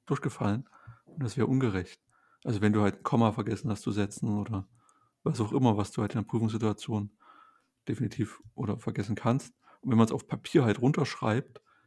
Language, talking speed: German, 185 wpm